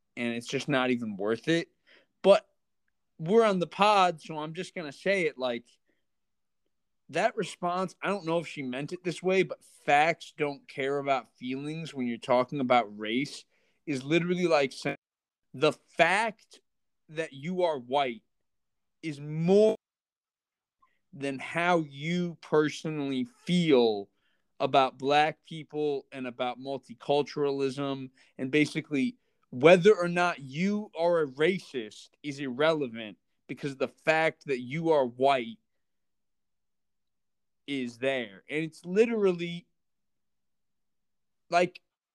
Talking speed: 125 wpm